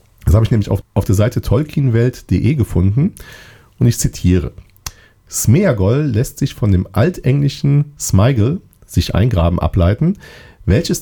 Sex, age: male, 40-59